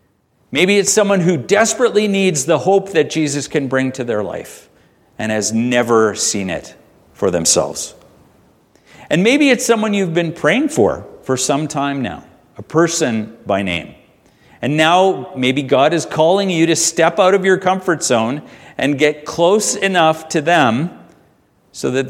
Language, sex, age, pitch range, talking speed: English, male, 50-69, 115-175 Hz, 165 wpm